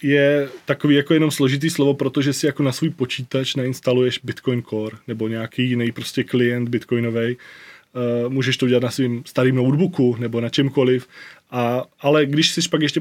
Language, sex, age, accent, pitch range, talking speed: Czech, male, 20-39, native, 120-145 Hz, 175 wpm